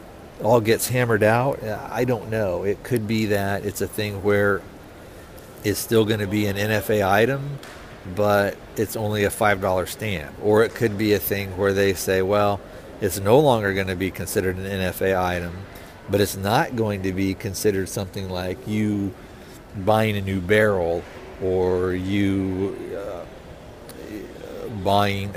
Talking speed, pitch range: 160 wpm, 95-110 Hz